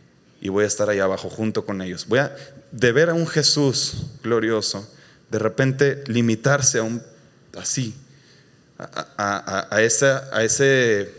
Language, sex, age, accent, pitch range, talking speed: Spanish, male, 20-39, Mexican, 110-145 Hz, 160 wpm